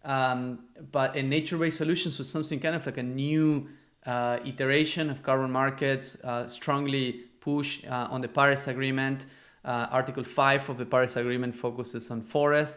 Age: 30-49